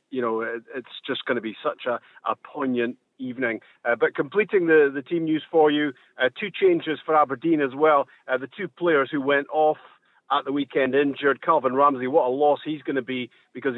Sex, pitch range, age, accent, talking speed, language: male, 130-155 Hz, 40-59, British, 215 wpm, English